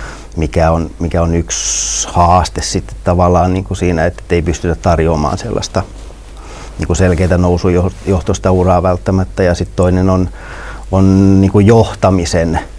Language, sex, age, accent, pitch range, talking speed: Finnish, male, 30-49, native, 85-100 Hz, 130 wpm